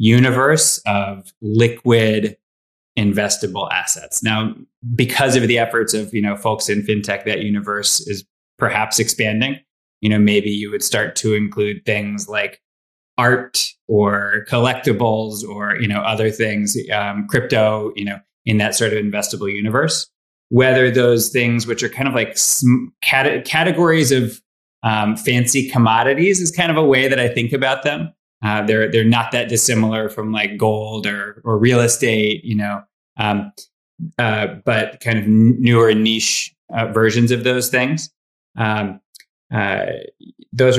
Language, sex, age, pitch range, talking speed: English, male, 20-39, 105-125 Hz, 150 wpm